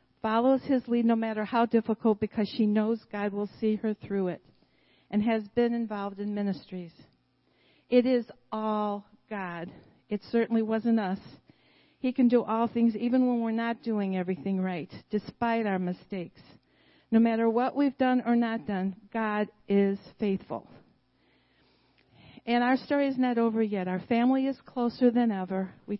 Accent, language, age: American, English, 50-69